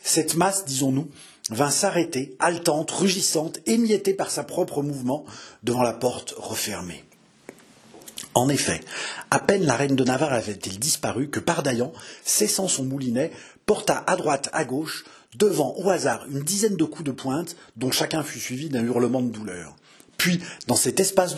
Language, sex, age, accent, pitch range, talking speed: French, male, 40-59, French, 125-170 Hz, 165 wpm